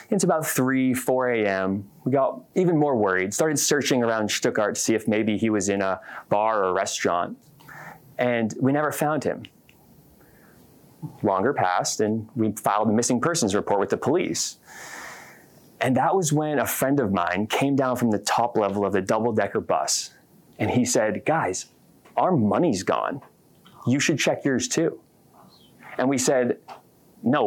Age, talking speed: 30-49, 165 wpm